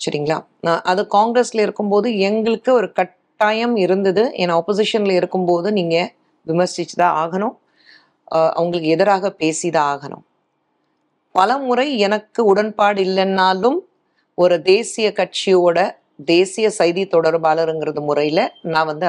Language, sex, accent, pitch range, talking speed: Tamil, female, native, 170-210 Hz, 105 wpm